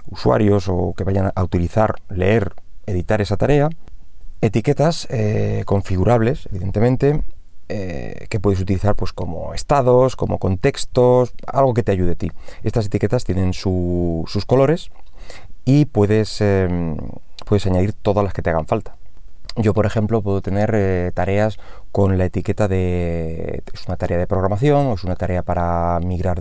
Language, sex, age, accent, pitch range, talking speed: Spanish, male, 30-49, Spanish, 90-120 Hz, 150 wpm